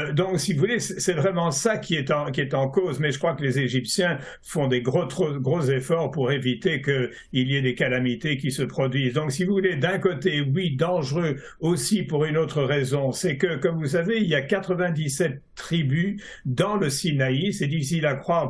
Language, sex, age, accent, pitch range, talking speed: French, male, 60-79, French, 135-180 Hz, 215 wpm